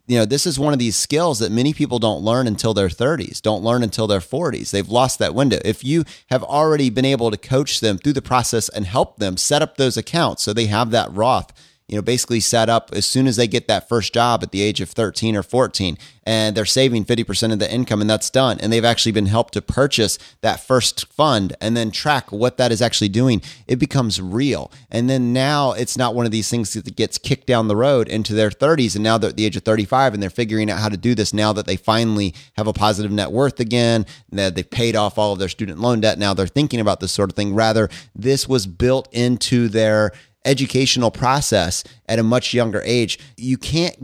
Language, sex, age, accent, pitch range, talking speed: English, male, 30-49, American, 105-130 Hz, 240 wpm